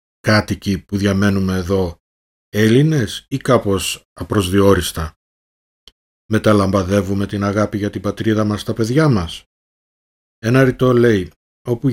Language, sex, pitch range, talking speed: Greek, male, 95-115 Hz, 110 wpm